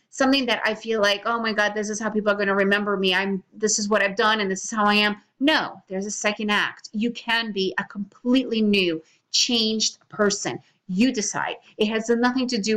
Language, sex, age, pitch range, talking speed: English, female, 30-49, 200-235 Hz, 230 wpm